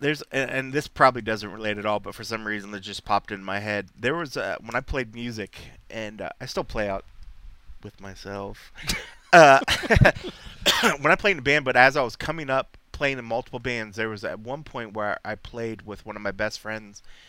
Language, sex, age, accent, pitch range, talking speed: English, male, 30-49, American, 105-130 Hz, 220 wpm